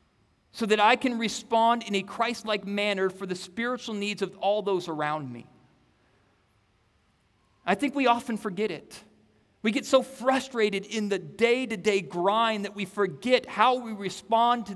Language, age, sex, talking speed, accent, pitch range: English, 40-59, male, 160 wpm, American, 145-220 Hz